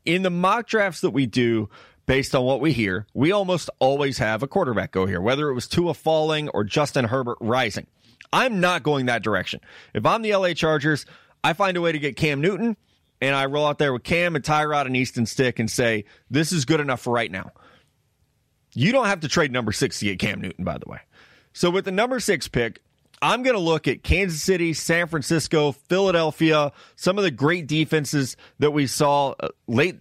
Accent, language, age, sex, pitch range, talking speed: American, English, 30-49, male, 125-170 Hz, 210 wpm